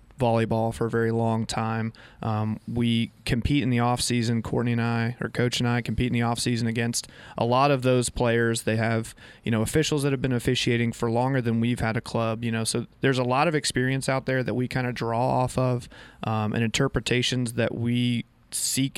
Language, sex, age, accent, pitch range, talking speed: English, male, 20-39, American, 115-130 Hz, 215 wpm